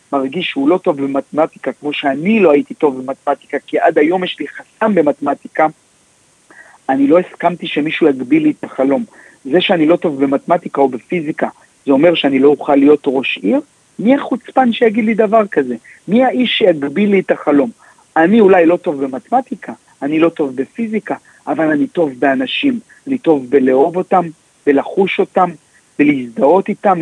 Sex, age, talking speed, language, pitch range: male, 50-69, 165 wpm, Hebrew, 150-220 Hz